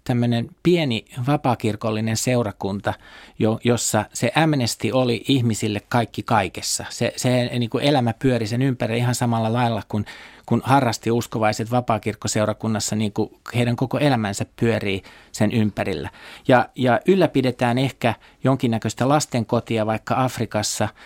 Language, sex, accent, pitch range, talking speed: Finnish, male, native, 110-140 Hz, 120 wpm